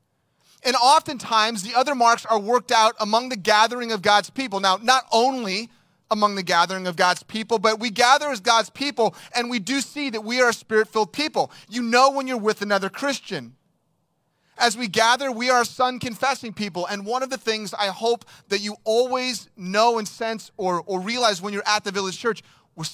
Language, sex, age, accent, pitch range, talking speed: English, male, 30-49, American, 195-240 Hz, 195 wpm